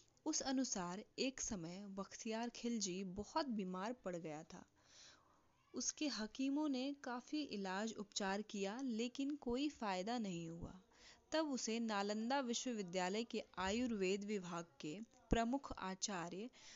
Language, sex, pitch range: Hindi, female, 200-260 Hz